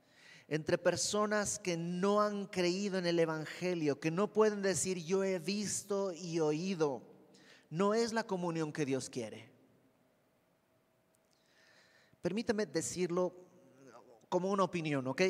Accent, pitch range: Mexican, 140-180 Hz